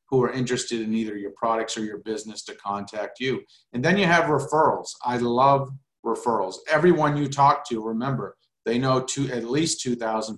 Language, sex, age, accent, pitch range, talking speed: English, male, 40-59, American, 110-135 Hz, 185 wpm